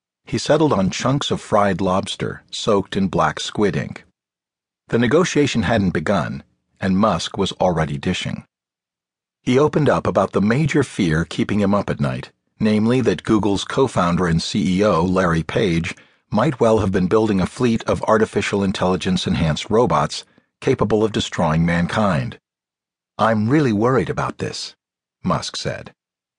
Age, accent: 50-69, American